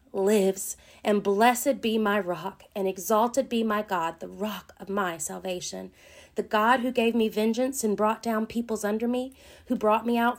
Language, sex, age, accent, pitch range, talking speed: English, female, 40-59, American, 180-225 Hz, 185 wpm